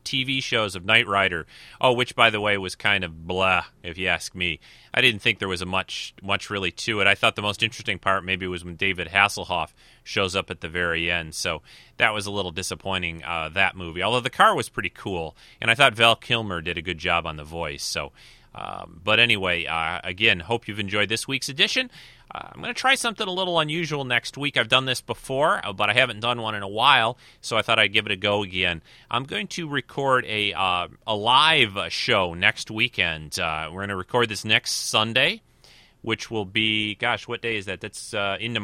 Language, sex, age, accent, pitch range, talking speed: English, male, 30-49, American, 90-115 Hz, 225 wpm